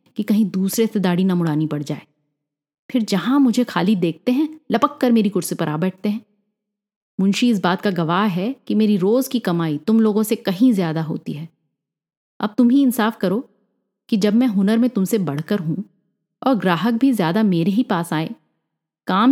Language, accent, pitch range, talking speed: Hindi, native, 175-240 Hz, 195 wpm